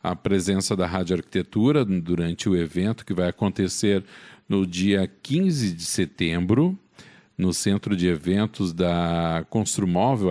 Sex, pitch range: male, 90-115 Hz